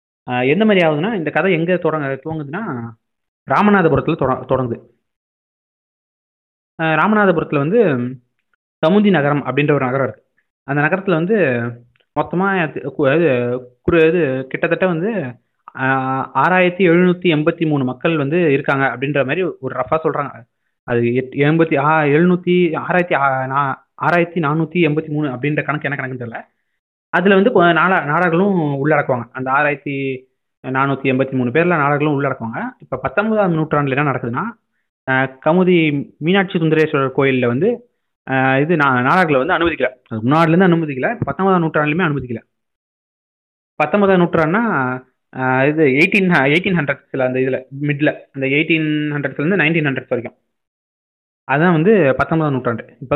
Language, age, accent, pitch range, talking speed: Tamil, 20-39, native, 130-175 Hz, 105 wpm